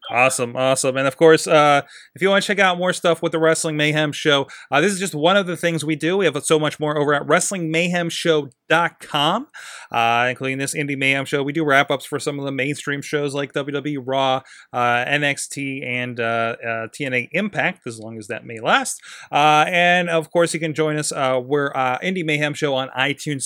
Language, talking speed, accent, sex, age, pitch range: English, 220 wpm, American, male, 30-49, 135-170 Hz